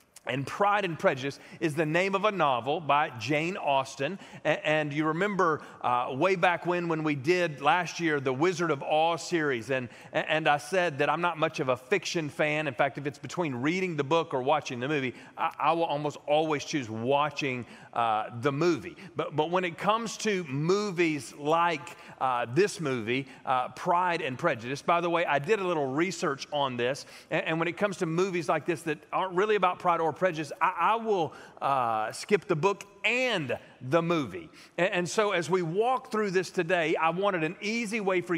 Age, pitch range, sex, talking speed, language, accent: 40-59, 155-200 Hz, male, 205 wpm, English, American